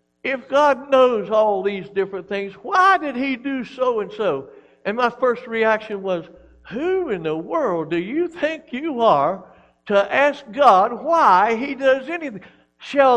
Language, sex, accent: English, male, American